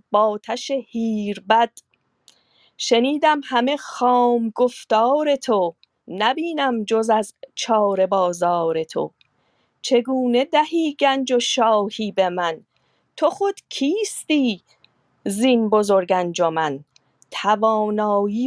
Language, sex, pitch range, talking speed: Persian, female, 205-270 Hz, 90 wpm